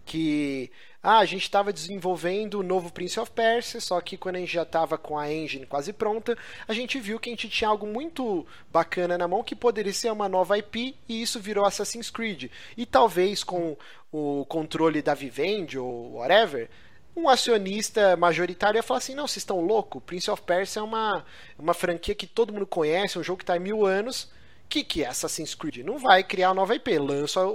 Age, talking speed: 30-49, 210 wpm